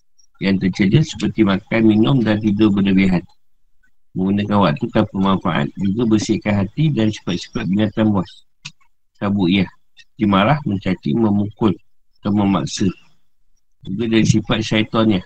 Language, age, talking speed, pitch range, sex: Malay, 50-69, 115 wpm, 100-125 Hz, male